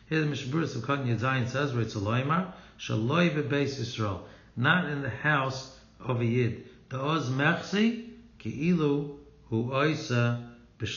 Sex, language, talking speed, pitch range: male, English, 95 wpm, 115-150 Hz